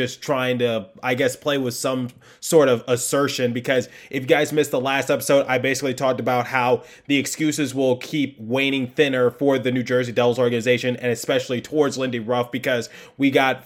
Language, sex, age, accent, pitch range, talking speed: English, male, 20-39, American, 125-145 Hz, 195 wpm